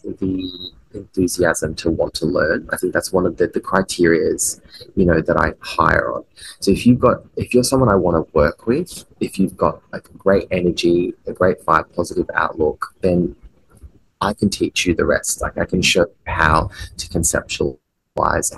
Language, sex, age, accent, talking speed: English, male, 20-39, Australian, 185 wpm